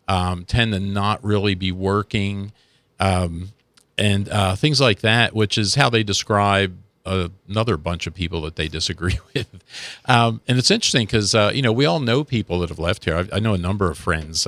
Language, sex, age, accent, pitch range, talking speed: English, male, 50-69, American, 90-115 Hz, 195 wpm